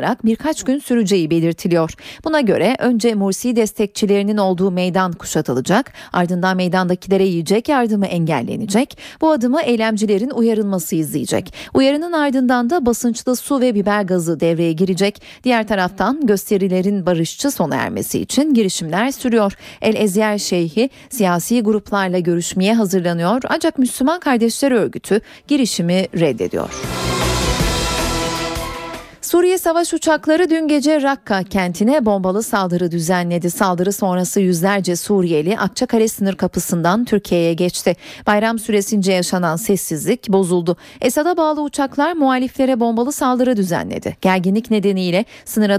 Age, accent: 40-59, native